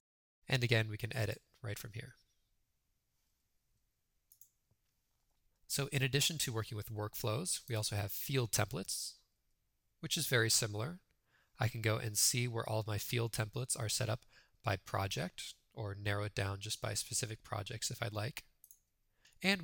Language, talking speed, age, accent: English, 160 wpm, 20-39, American